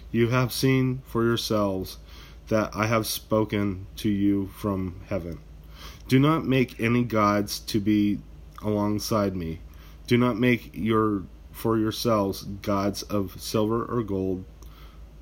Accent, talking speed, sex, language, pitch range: American, 130 wpm, male, English, 80-110 Hz